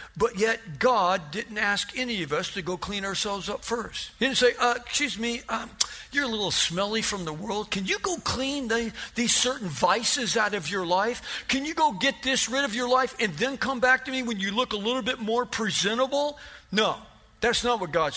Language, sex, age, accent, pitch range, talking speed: English, male, 50-69, American, 180-255 Hz, 220 wpm